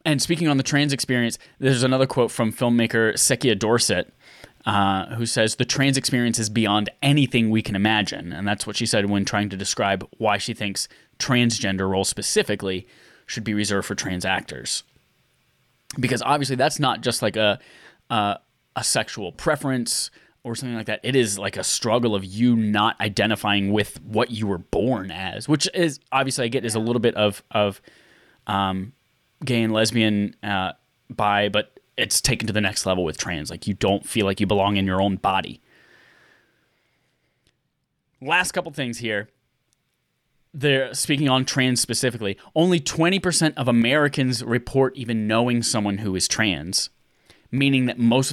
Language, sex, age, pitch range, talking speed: English, male, 10-29, 100-130 Hz, 170 wpm